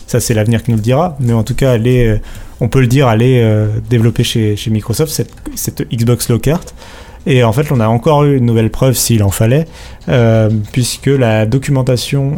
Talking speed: 215 wpm